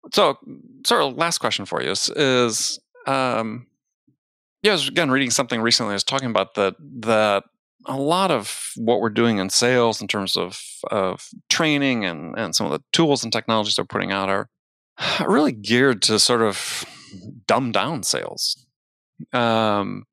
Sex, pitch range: male, 105-140 Hz